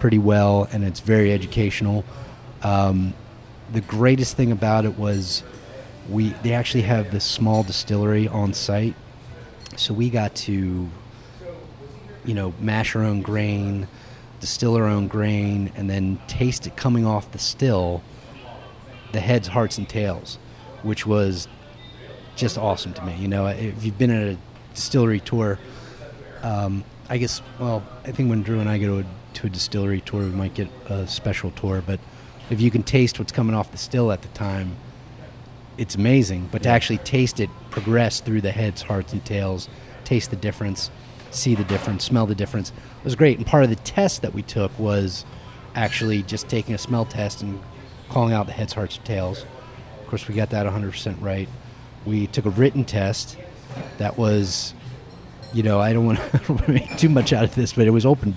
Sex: male